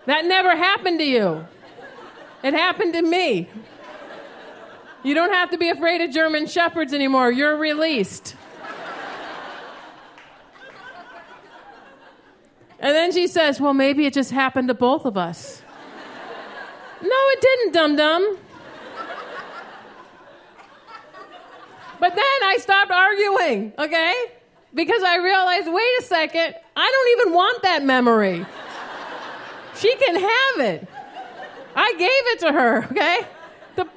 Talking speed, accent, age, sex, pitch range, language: 120 wpm, American, 40-59, female, 280-365 Hz, English